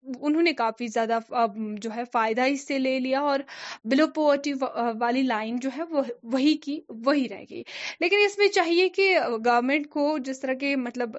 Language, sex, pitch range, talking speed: Urdu, female, 240-305 Hz, 190 wpm